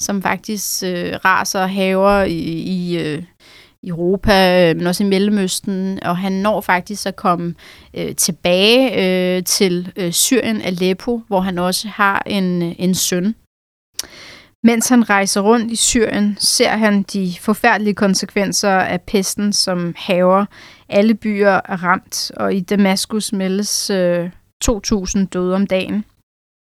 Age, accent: 30-49, native